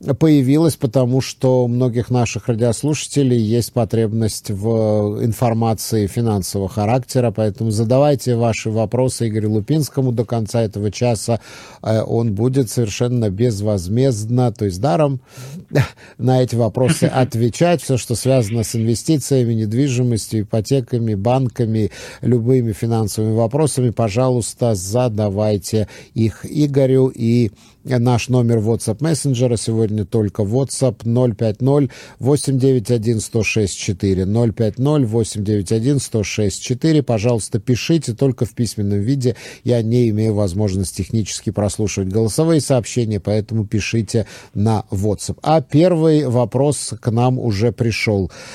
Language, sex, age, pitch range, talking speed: Russian, male, 50-69, 110-130 Hz, 110 wpm